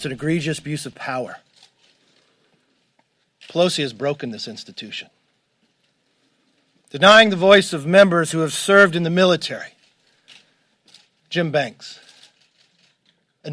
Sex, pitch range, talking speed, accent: male, 145-185 Hz, 110 wpm, American